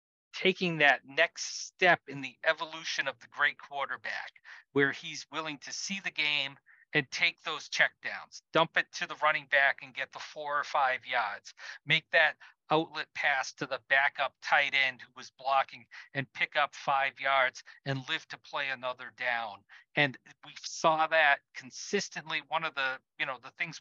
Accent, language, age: American, English, 40-59